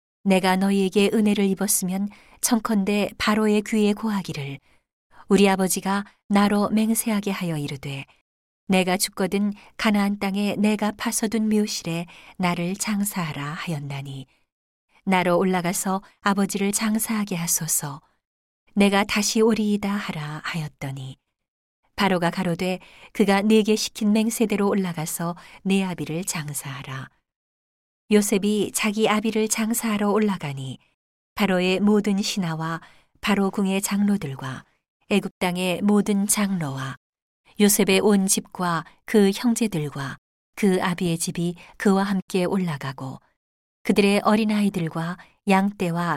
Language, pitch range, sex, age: Korean, 170-210 Hz, female, 40-59